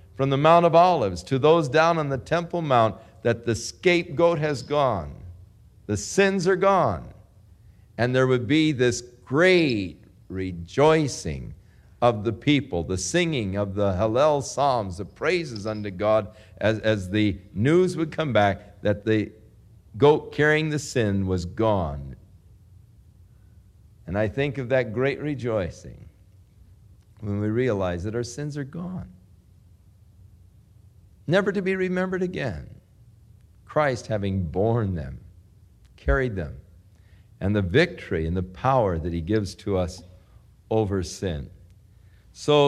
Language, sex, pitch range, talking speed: English, male, 95-130 Hz, 135 wpm